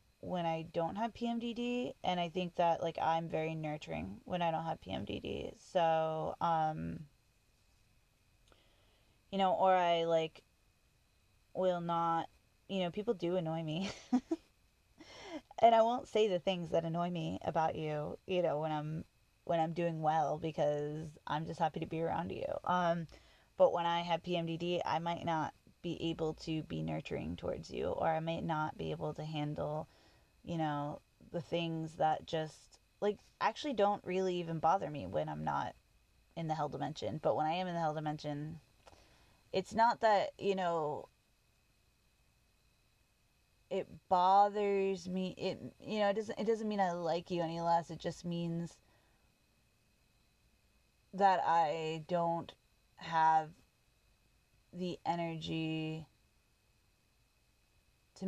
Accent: American